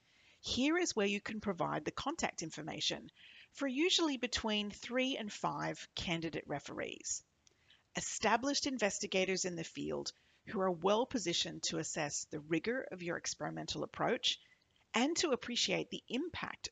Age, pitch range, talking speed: 30-49, 175-255 Hz, 140 wpm